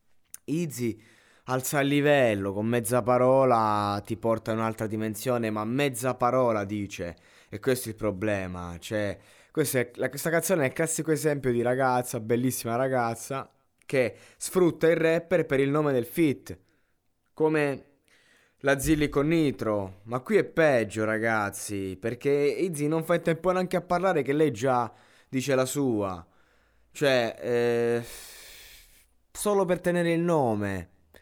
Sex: male